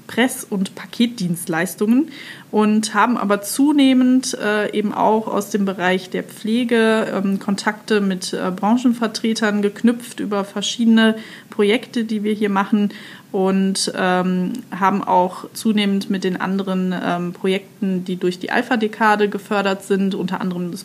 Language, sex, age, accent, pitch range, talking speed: German, female, 20-39, German, 190-220 Hz, 125 wpm